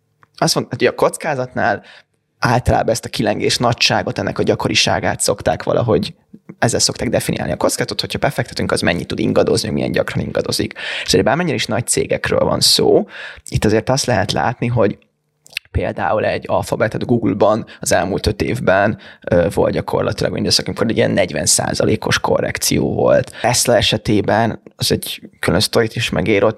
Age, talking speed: 20-39, 155 wpm